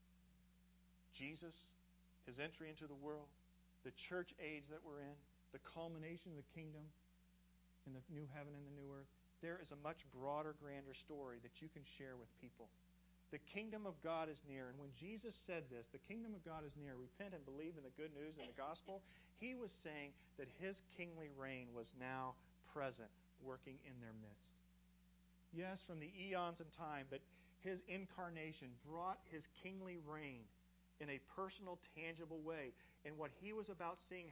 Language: English